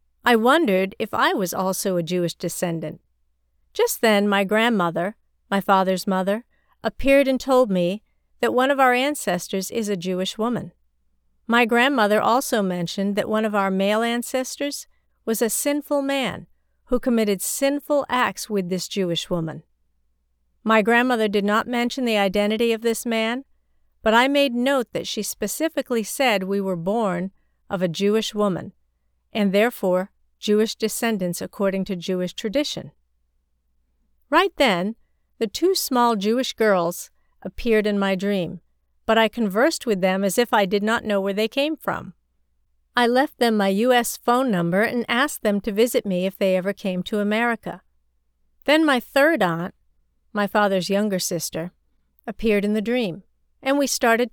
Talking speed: 160 wpm